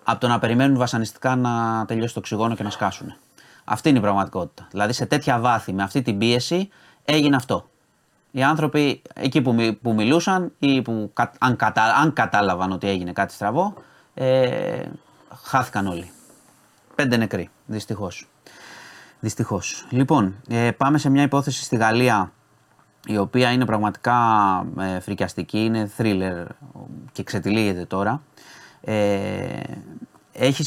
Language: Greek